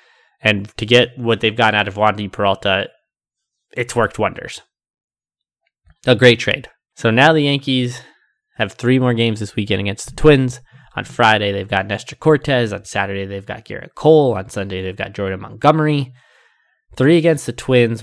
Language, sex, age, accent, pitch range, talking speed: English, male, 20-39, American, 105-135 Hz, 175 wpm